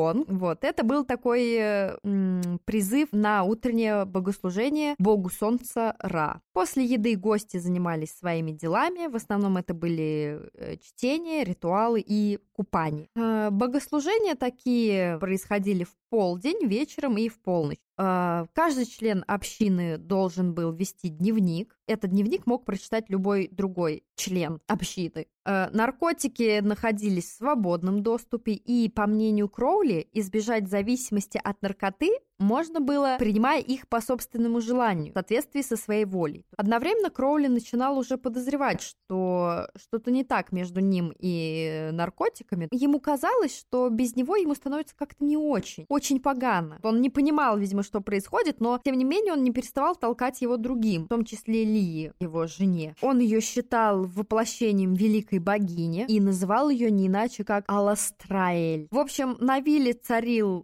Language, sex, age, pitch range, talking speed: Russian, female, 20-39, 190-250 Hz, 140 wpm